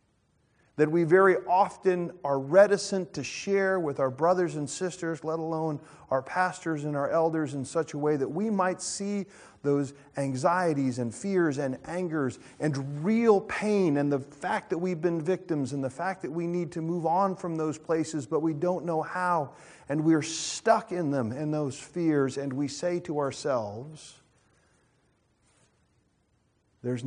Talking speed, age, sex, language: 165 wpm, 40-59, male, English